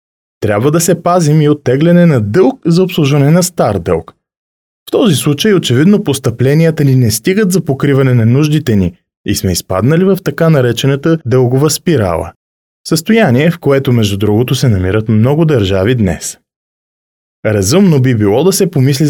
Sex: male